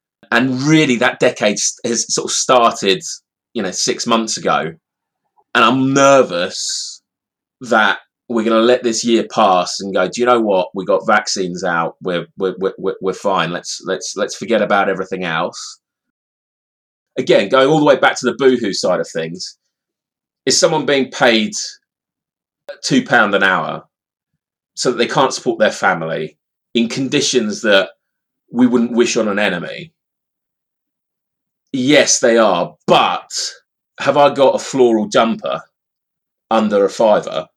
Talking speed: 150 wpm